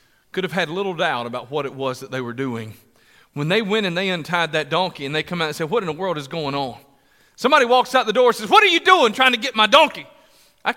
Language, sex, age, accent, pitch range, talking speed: English, male, 40-59, American, 160-270 Hz, 285 wpm